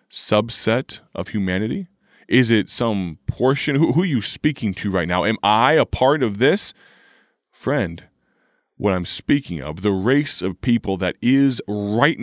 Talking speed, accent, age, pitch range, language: 160 wpm, American, 30-49, 95-130 Hz, English